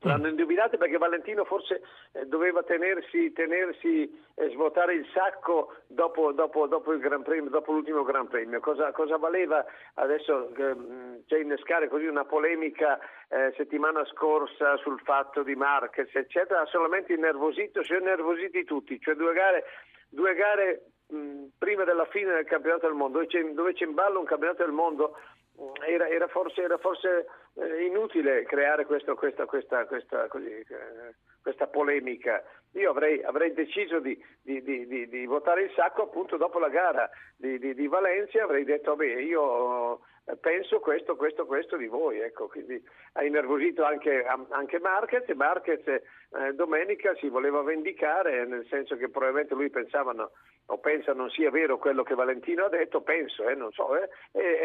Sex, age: male, 50-69